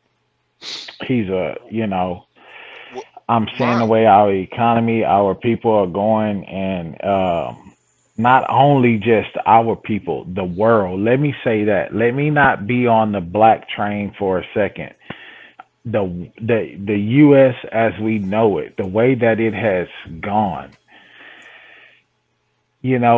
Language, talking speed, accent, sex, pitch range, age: English, 140 wpm, American, male, 100-115 Hz, 30-49